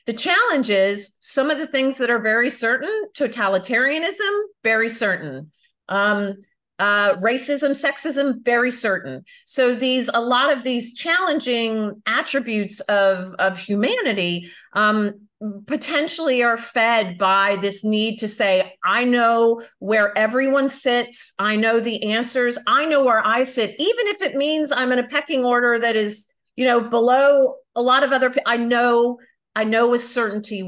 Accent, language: American, English